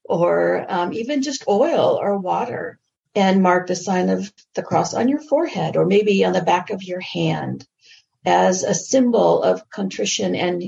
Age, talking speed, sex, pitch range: 50-69, 175 wpm, female, 160-230 Hz